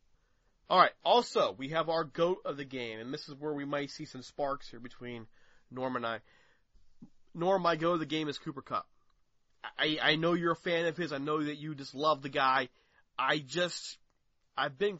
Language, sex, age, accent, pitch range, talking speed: English, male, 30-49, American, 125-155 Hz, 210 wpm